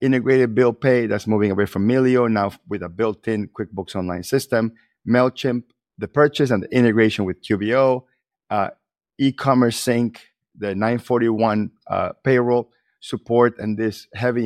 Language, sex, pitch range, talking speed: English, male, 105-130 Hz, 140 wpm